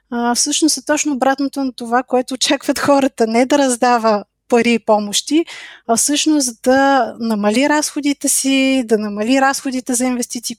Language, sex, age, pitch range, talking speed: Bulgarian, female, 20-39, 225-275 Hz, 155 wpm